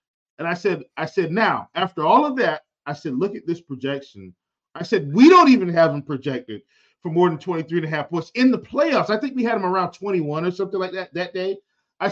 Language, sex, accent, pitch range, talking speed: English, male, American, 170-245 Hz, 245 wpm